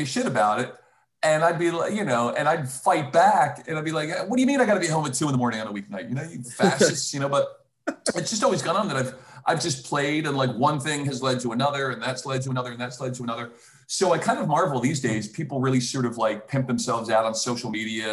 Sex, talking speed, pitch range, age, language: male, 290 wpm, 115-150 Hz, 40-59, English